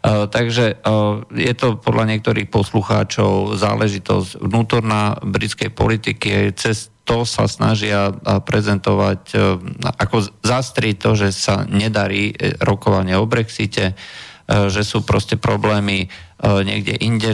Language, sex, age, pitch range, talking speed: Slovak, male, 50-69, 100-115 Hz, 120 wpm